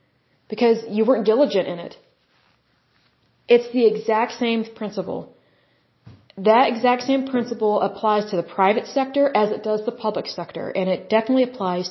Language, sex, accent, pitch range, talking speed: Hindi, female, American, 195-235 Hz, 150 wpm